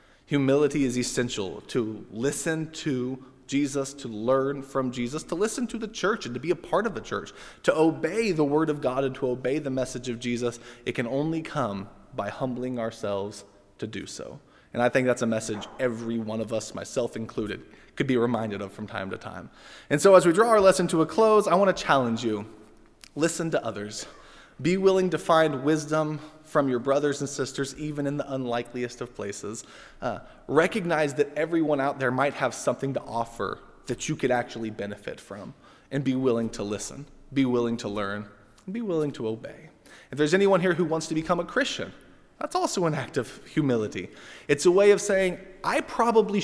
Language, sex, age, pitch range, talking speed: English, male, 20-39, 115-155 Hz, 200 wpm